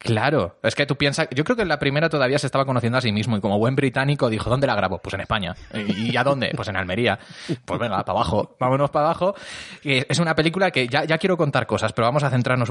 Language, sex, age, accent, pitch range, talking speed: Spanish, male, 20-39, Spanish, 115-145 Hz, 260 wpm